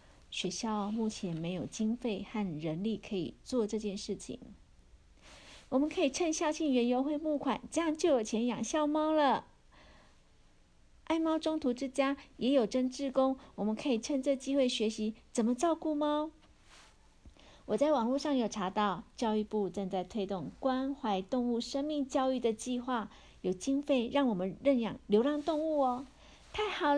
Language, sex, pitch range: Chinese, female, 195-270 Hz